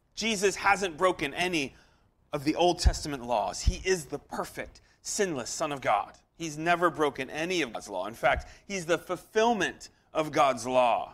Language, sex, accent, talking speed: English, male, American, 170 wpm